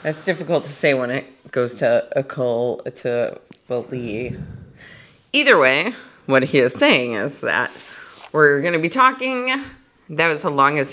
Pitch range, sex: 135-165 Hz, female